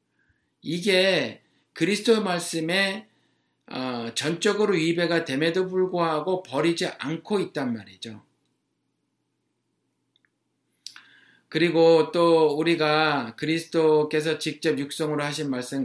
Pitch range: 140-185 Hz